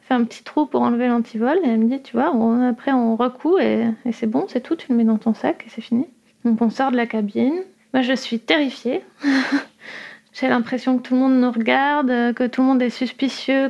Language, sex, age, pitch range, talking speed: French, female, 20-39, 230-265 Hz, 240 wpm